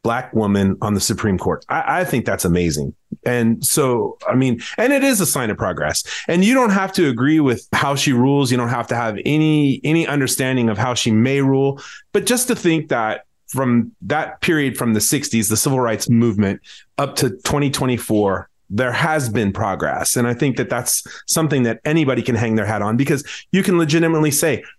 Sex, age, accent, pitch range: male, 30-49, American, 115-160 Hz